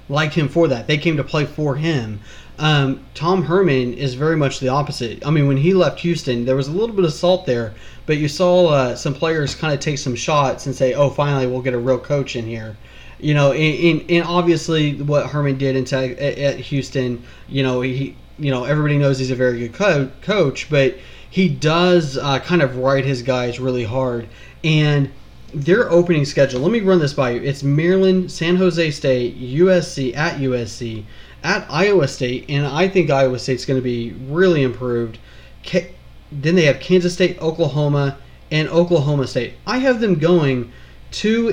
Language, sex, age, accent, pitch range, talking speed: English, male, 30-49, American, 130-170 Hz, 195 wpm